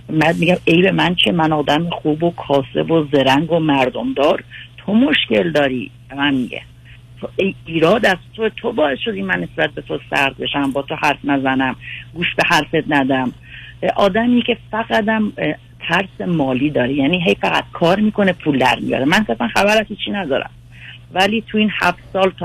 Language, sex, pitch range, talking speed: Persian, female, 135-180 Hz, 185 wpm